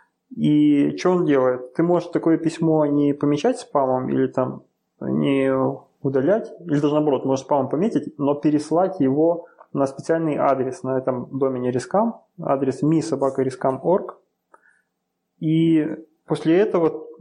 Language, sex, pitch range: Russian, male, 140-160 Hz